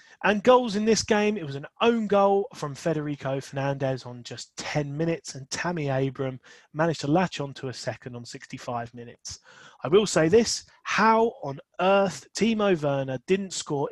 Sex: male